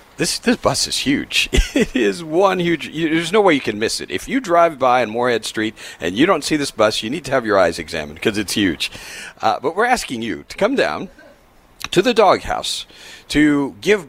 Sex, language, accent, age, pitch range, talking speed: male, English, American, 40-59, 105-175 Hz, 220 wpm